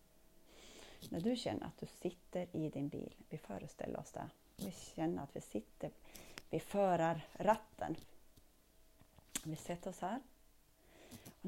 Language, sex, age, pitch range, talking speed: Swedish, female, 30-49, 155-215 Hz, 135 wpm